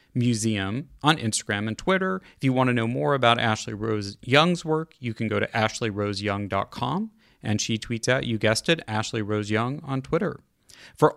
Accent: American